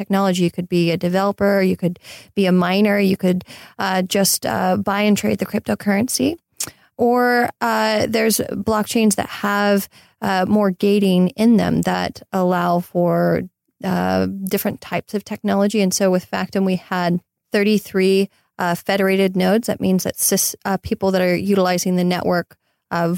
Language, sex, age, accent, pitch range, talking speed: English, female, 20-39, American, 175-200 Hz, 160 wpm